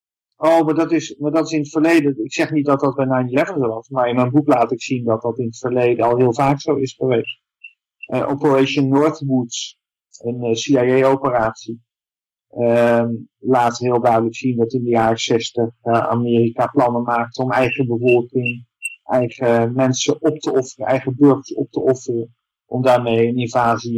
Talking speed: 180 wpm